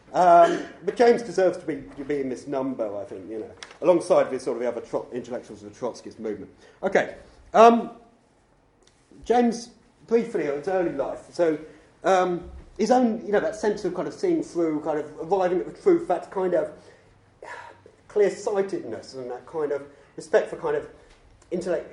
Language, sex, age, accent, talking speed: English, male, 30-49, British, 180 wpm